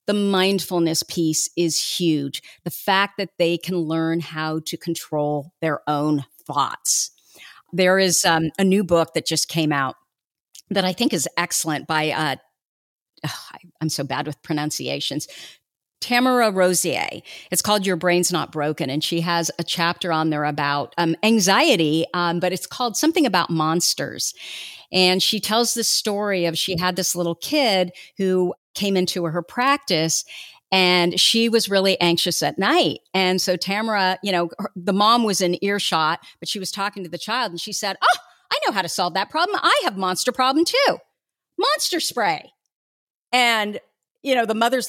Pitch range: 165-210 Hz